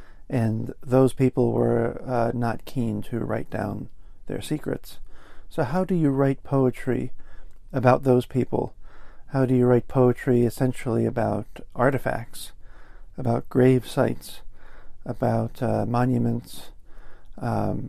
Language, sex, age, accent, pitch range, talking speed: English, male, 40-59, American, 105-130 Hz, 120 wpm